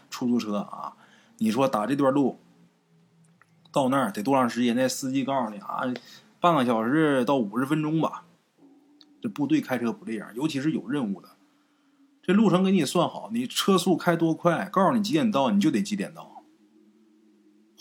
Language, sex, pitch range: Chinese, male, 150-250 Hz